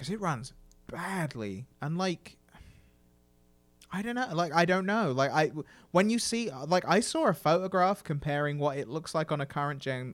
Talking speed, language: 190 wpm, English